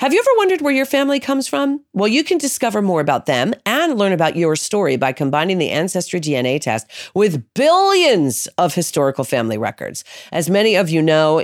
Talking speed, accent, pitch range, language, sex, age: 200 wpm, American, 140-195 Hz, English, female, 40-59